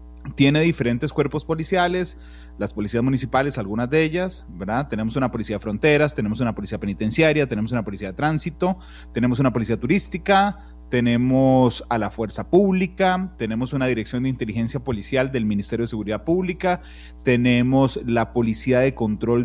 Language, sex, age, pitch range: Spanish, male, 30-49, 110-145 Hz